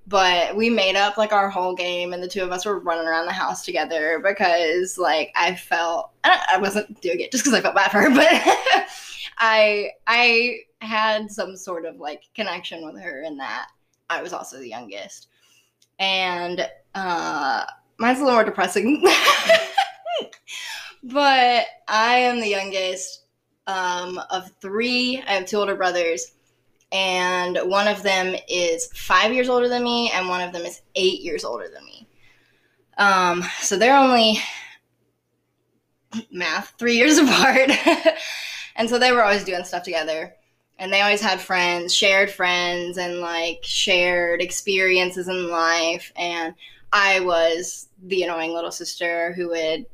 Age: 10-29